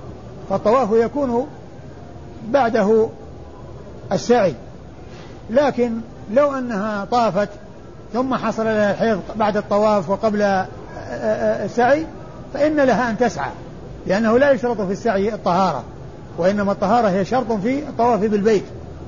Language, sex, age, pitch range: Arabic, male, 50-69, 185-220 Hz